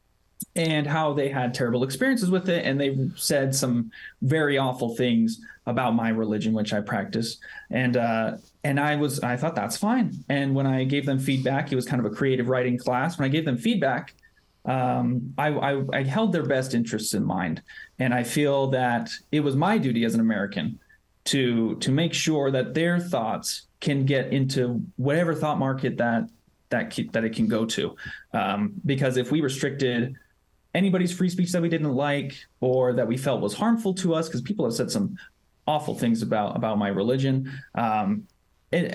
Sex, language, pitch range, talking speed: male, English, 125-170 Hz, 190 wpm